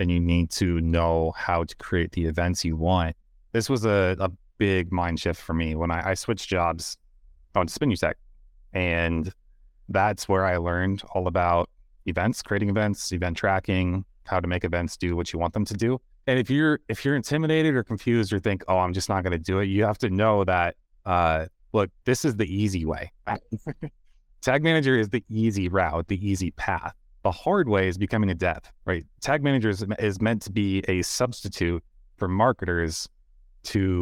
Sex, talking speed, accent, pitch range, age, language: male, 190 wpm, American, 85-105 Hz, 30-49, English